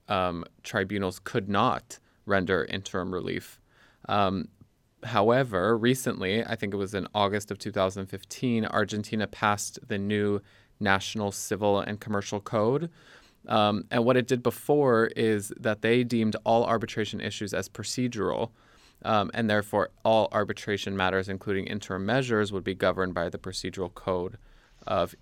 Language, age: English, 20-39